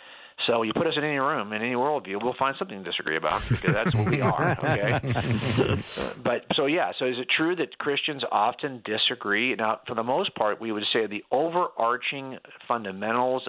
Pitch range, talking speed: 110-150 Hz, 190 wpm